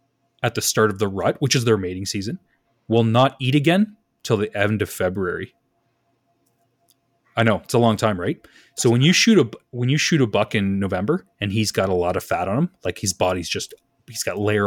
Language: English